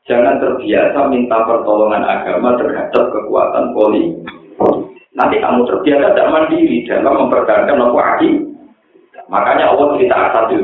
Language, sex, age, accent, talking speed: Indonesian, male, 50-69, native, 120 wpm